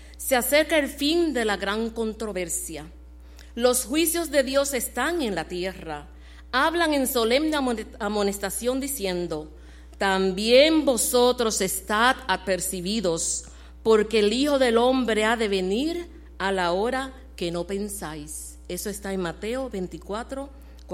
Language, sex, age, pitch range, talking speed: Spanish, female, 50-69, 170-245 Hz, 125 wpm